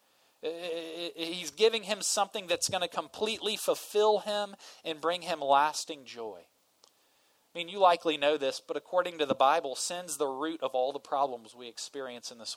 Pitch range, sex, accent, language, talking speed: 140-190 Hz, male, American, English, 175 wpm